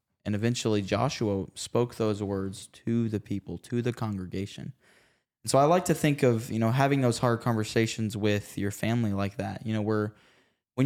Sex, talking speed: male, 190 wpm